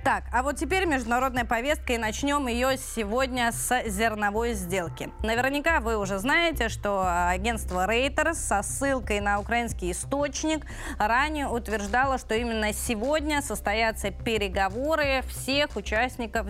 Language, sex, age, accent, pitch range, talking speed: Russian, female, 20-39, native, 215-265 Hz, 125 wpm